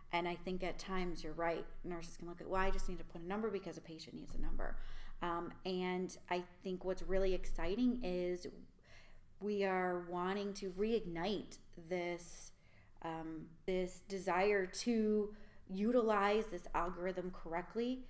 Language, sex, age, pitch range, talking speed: English, female, 30-49, 170-190 Hz, 155 wpm